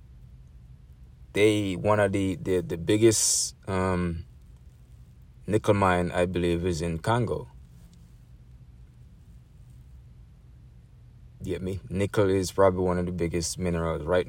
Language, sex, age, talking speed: English, male, 20-39, 115 wpm